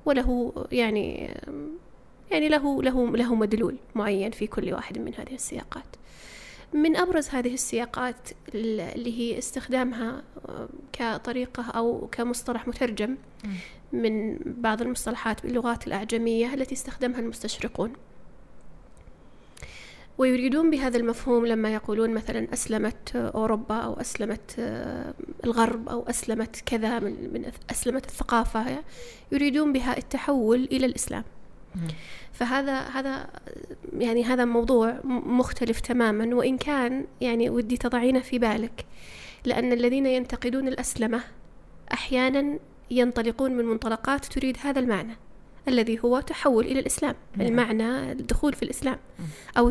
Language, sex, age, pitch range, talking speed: Arabic, female, 20-39, 230-265 Hz, 110 wpm